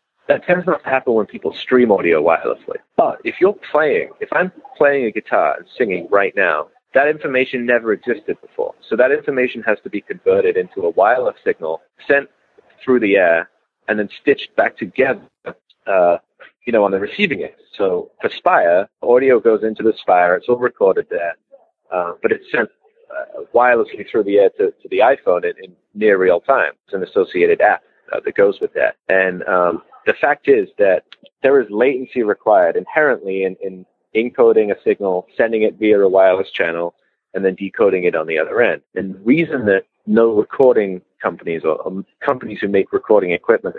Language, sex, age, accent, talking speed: English, male, 30-49, American, 190 wpm